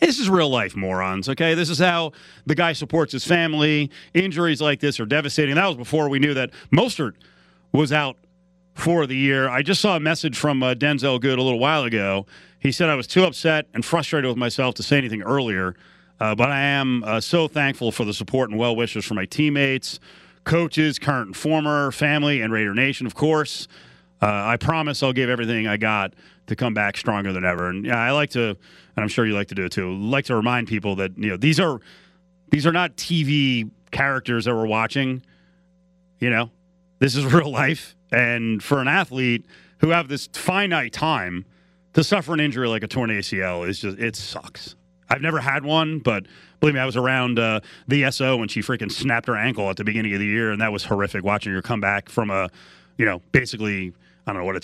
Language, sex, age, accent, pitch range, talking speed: English, male, 40-59, American, 105-150 Hz, 220 wpm